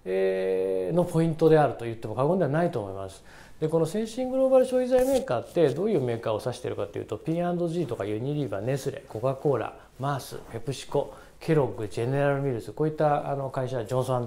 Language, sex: Japanese, male